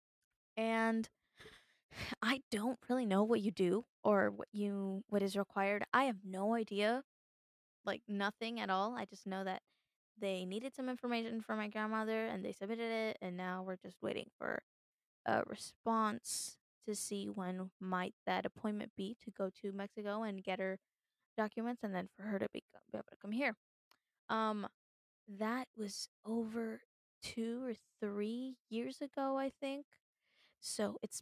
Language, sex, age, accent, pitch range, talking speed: English, female, 10-29, American, 200-230 Hz, 160 wpm